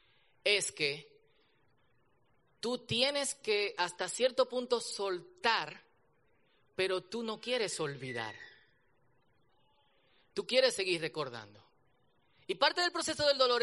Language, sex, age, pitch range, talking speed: Spanish, male, 30-49, 170-265 Hz, 105 wpm